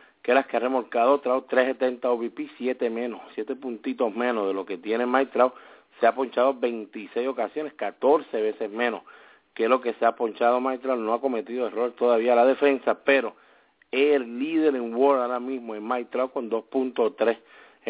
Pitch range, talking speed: 120-140 Hz, 180 wpm